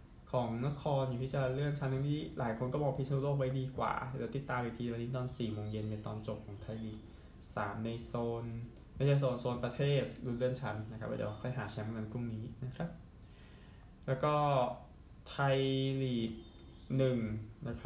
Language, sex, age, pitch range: Thai, male, 20-39, 110-130 Hz